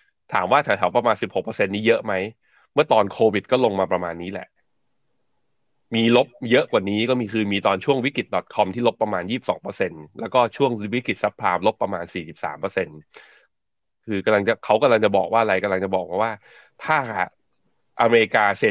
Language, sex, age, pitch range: Thai, male, 20-39, 95-120 Hz